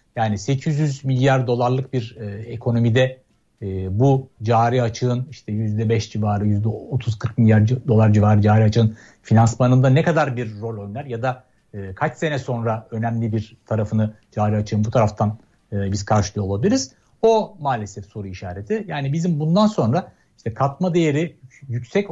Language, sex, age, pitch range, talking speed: Turkish, male, 60-79, 110-130 Hz, 150 wpm